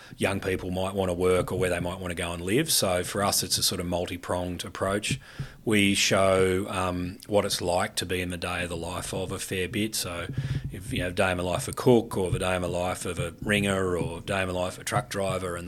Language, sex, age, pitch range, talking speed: English, male, 30-49, 90-110 Hz, 275 wpm